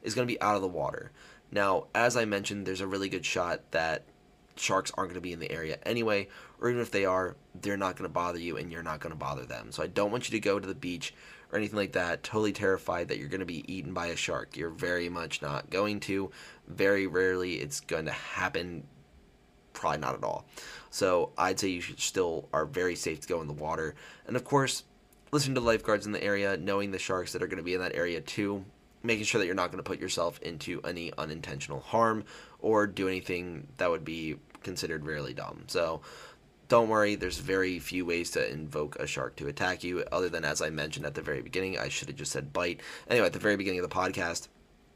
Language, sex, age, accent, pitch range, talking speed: English, male, 20-39, American, 85-105 Hz, 230 wpm